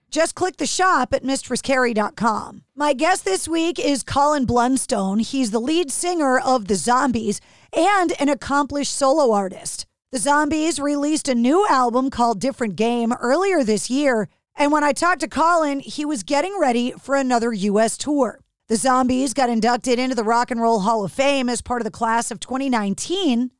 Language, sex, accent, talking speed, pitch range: English, female, American, 180 wpm, 240-295 Hz